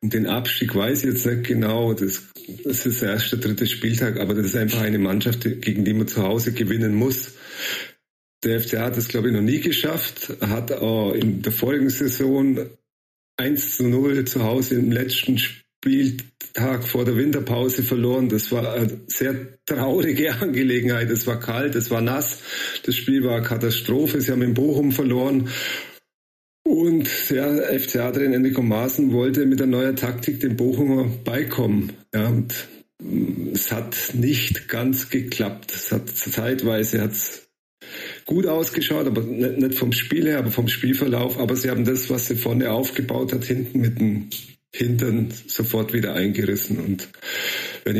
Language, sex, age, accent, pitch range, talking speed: German, male, 40-59, German, 110-130 Hz, 165 wpm